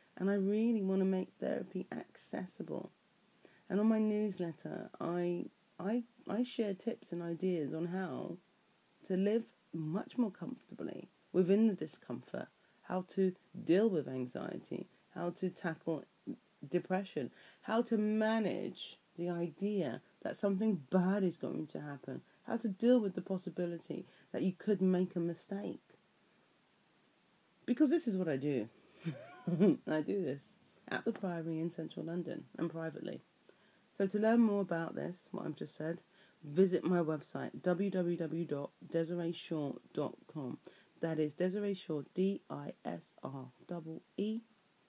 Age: 30-49